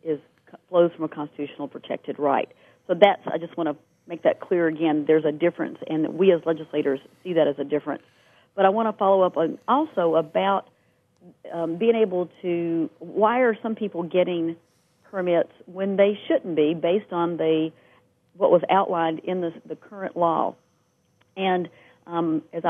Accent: American